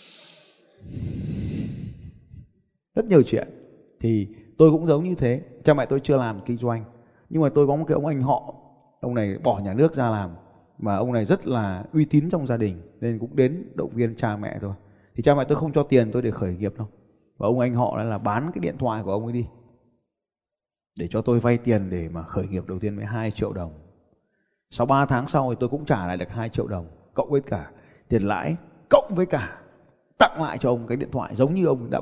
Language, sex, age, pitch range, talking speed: Vietnamese, male, 20-39, 105-135 Hz, 230 wpm